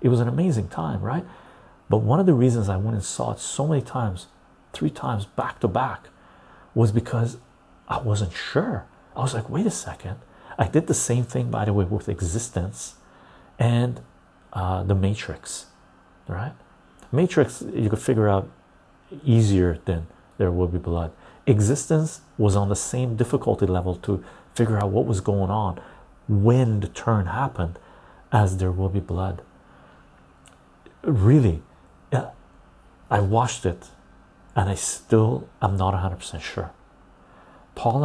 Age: 40-59